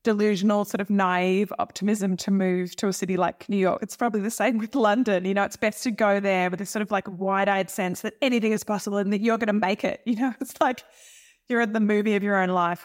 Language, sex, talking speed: English, female, 265 wpm